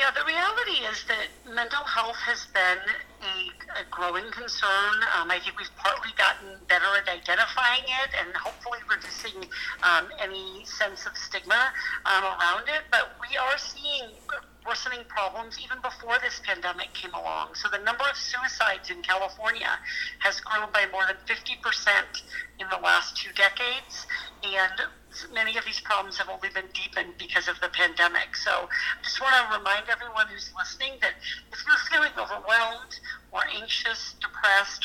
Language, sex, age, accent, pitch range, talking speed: English, female, 50-69, American, 195-270 Hz, 160 wpm